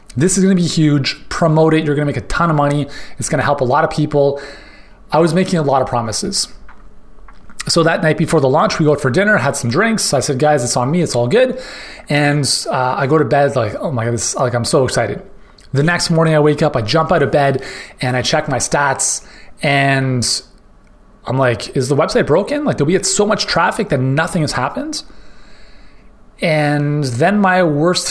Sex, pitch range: male, 130-175 Hz